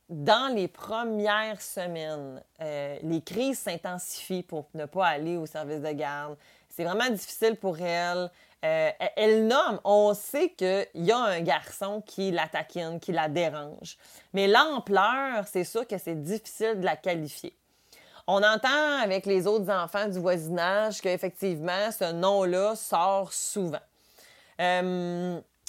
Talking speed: 145 wpm